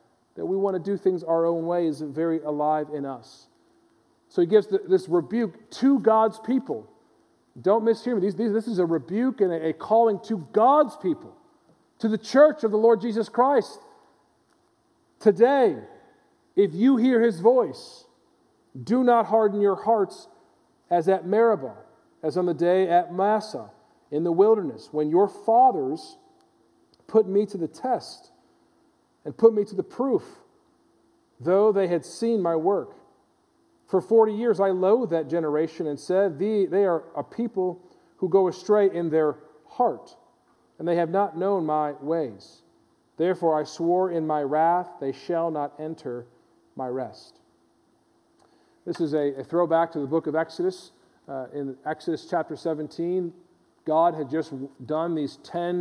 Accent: American